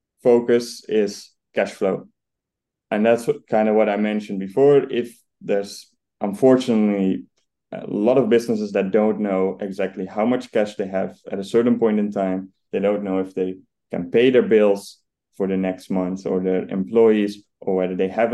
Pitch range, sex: 95-110 Hz, male